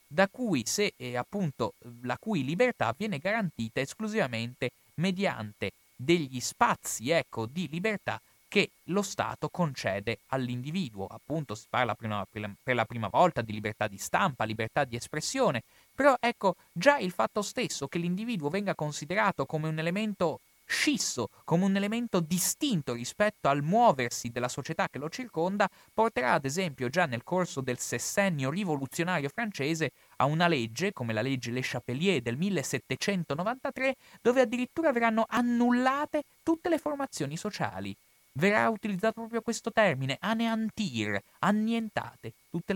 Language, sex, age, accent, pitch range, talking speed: Italian, male, 30-49, native, 125-210 Hz, 140 wpm